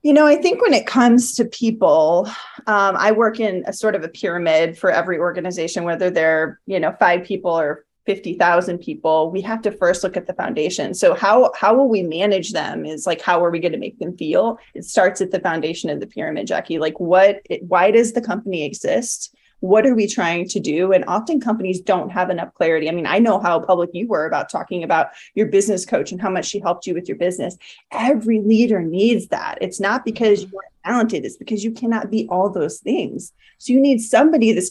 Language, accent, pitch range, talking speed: English, American, 180-230 Hz, 225 wpm